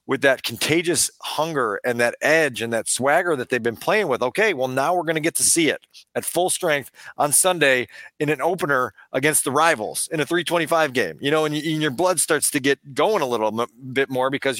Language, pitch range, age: English, 125-160 Hz, 40-59